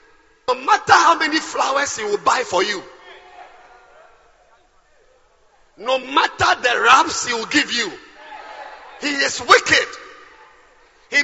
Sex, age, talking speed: male, 50-69, 115 wpm